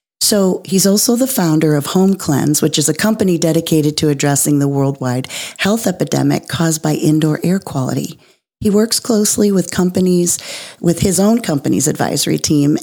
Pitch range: 145-180 Hz